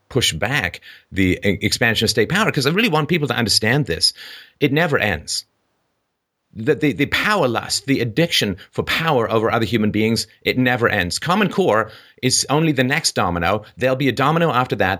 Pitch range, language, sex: 100-130 Hz, English, male